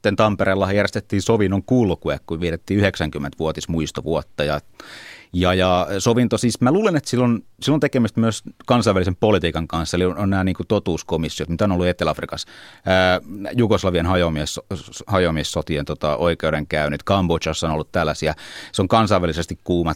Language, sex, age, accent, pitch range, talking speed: Finnish, male, 30-49, native, 80-100 Hz, 140 wpm